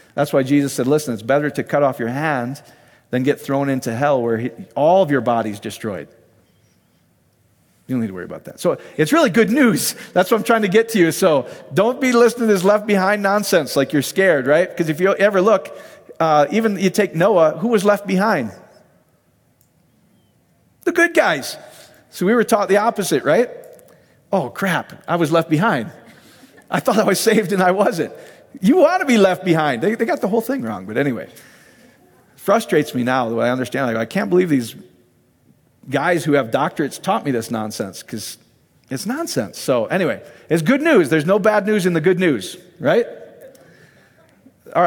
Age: 40-59